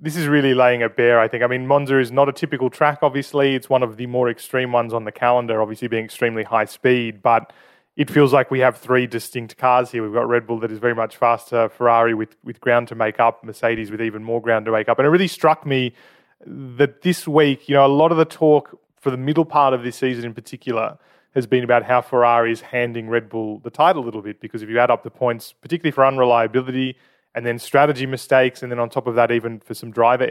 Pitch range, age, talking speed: 115-145 Hz, 20-39, 255 wpm